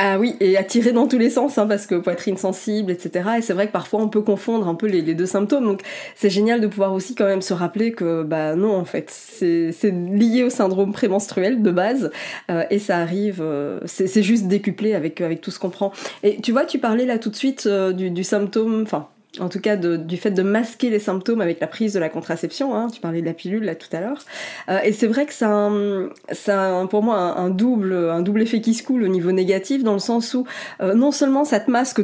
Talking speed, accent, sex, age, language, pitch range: 255 wpm, French, female, 20-39, French, 190-240 Hz